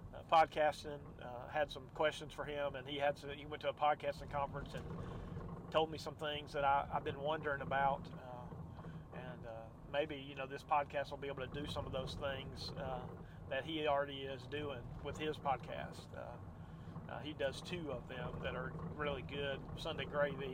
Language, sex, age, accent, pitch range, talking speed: English, male, 40-59, American, 130-150 Hz, 200 wpm